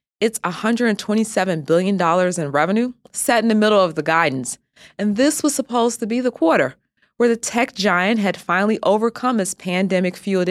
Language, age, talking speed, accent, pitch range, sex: English, 20-39, 165 wpm, American, 175-235 Hz, female